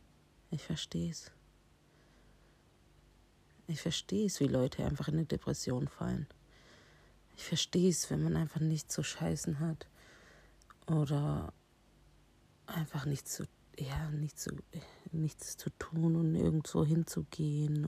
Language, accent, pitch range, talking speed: German, German, 130-160 Hz, 120 wpm